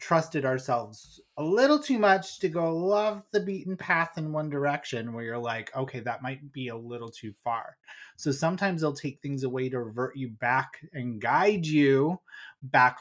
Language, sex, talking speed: English, male, 185 wpm